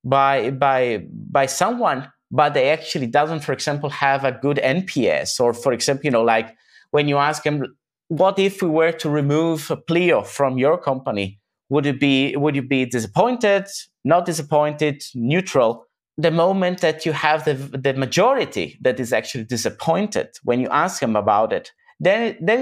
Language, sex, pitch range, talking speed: Italian, male, 130-180 Hz, 170 wpm